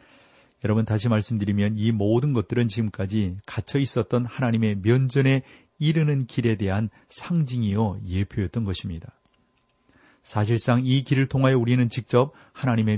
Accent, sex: native, male